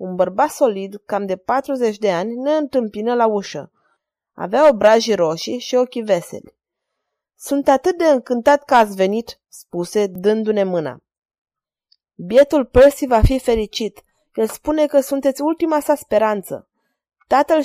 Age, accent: 20-39, native